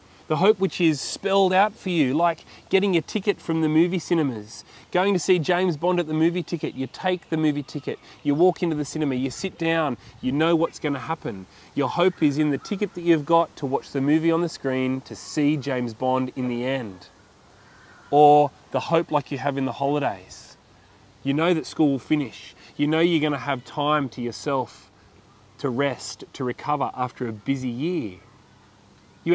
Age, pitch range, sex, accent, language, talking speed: 30-49, 125-170 Hz, male, Australian, English, 205 wpm